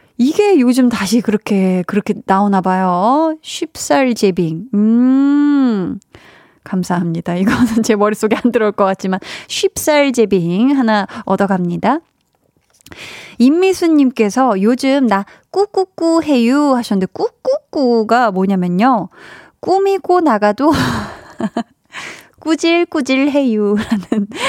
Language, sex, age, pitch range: Korean, female, 20-39, 205-290 Hz